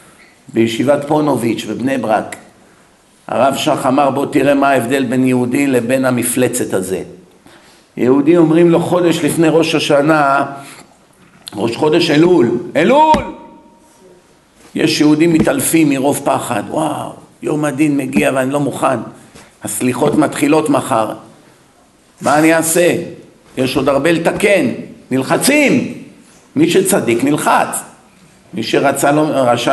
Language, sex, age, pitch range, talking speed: Hebrew, male, 50-69, 135-170 Hz, 110 wpm